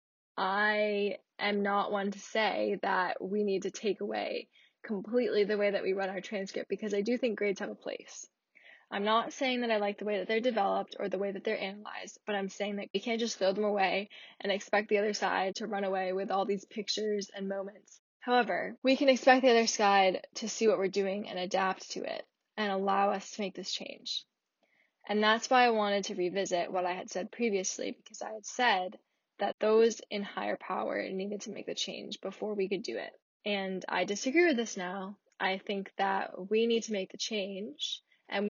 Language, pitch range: English, 195-225 Hz